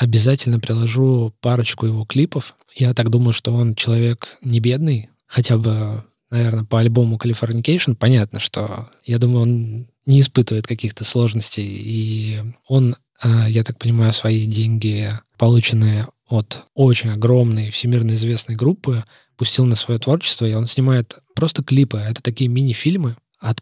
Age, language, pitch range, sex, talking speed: 20-39, Russian, 115-130 Hz, male, 140 wpm